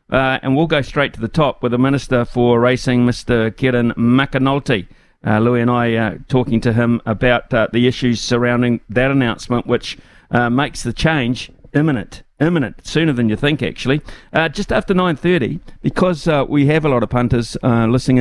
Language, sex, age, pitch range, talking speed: English, male, 50-69, 120-145 Hz, 190 wpm